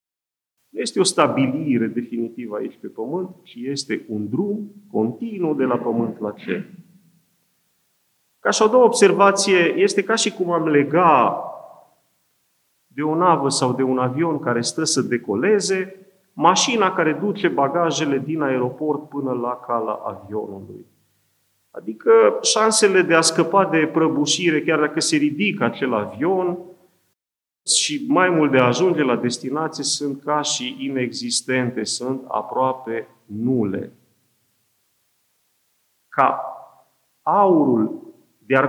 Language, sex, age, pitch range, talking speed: Romanian, male, 40-59, 120-185 Hz, 125 wpm